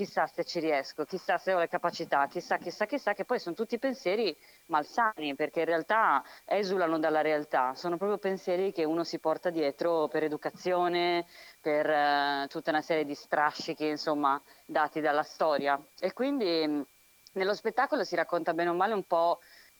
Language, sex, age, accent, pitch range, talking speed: Italian, female, 20-39, native, 145-175 Hz, 170 wpm